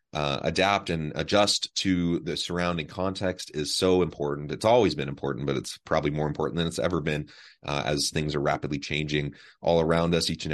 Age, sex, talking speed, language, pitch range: 30-49, male, 195 wpm, English, 75-95 Hz